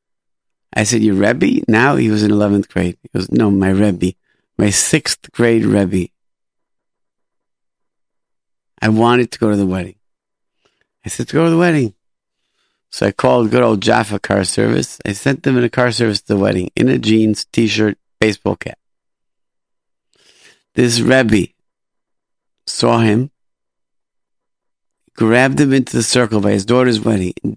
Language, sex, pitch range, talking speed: English, male, 105-135 Hz, 155 wpm